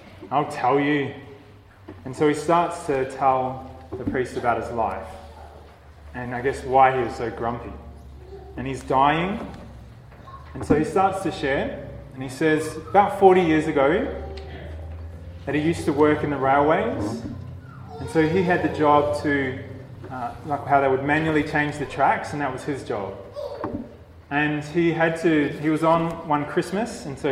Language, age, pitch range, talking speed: English, 20-39, 130-155 Hz, 170 wpm